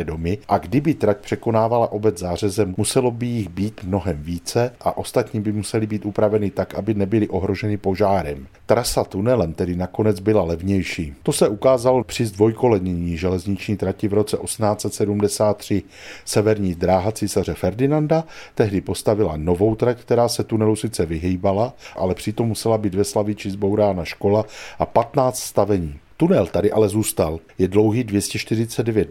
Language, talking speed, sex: Czech, 145 wpm, male